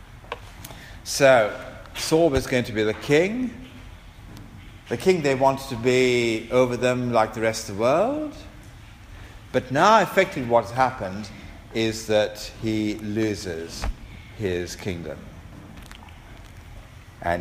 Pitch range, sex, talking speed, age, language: 95-115 Hz, male, 115 wpm, 50-69, English